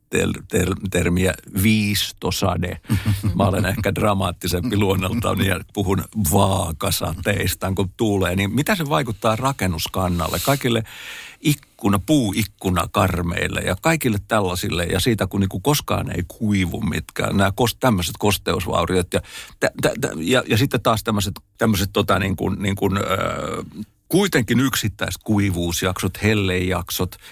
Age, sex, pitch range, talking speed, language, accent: 60-79, male, 95-115 Hz, 115 wpm, Finnish, native